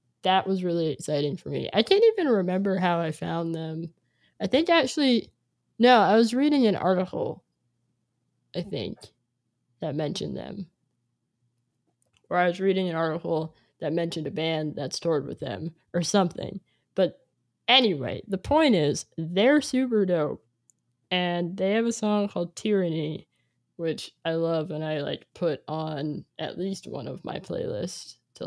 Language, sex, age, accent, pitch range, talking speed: English, female, 20-39, American, 155-190 Hz, 155 wpm